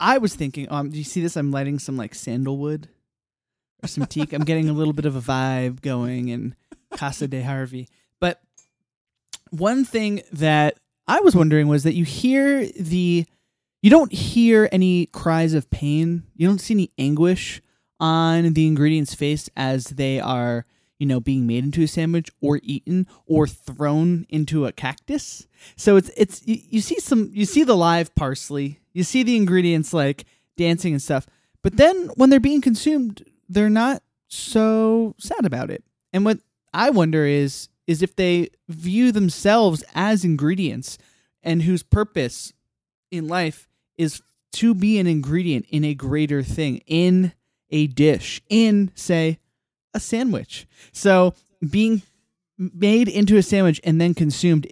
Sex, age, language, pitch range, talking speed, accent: male, 20-39, English, 145-195 Hz, 160 wpm, American